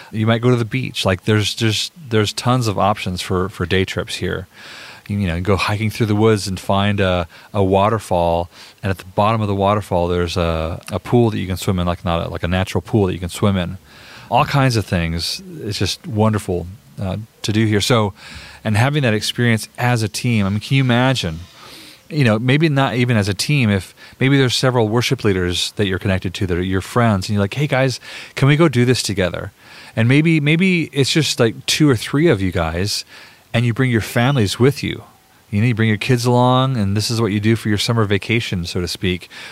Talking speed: 235 wpm